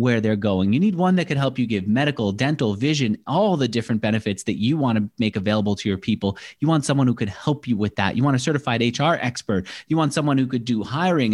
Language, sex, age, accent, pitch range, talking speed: English, male, 30-49, American, 110-145 Hz, 260 wpm